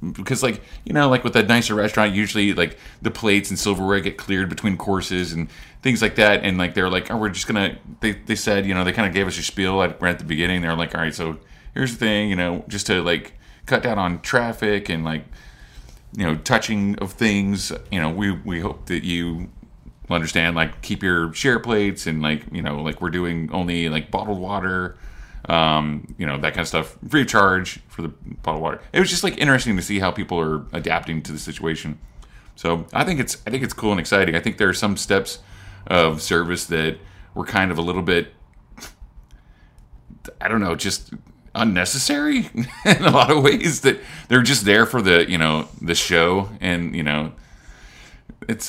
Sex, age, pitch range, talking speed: male, 30-49, 85-105 Hz, 215 wpm